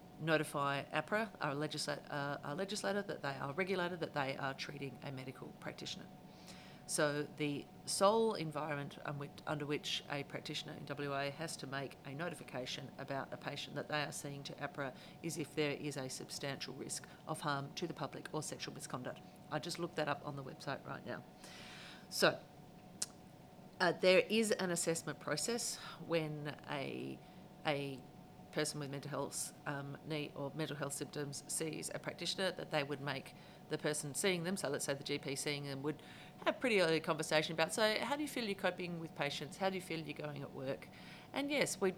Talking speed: 185 wpm